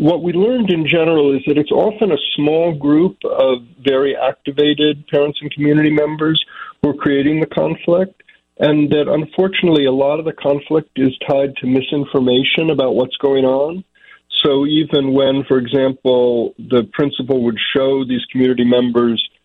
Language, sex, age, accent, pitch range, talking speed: English, male, 50-69, American, 120-150 Hz, 160 wpm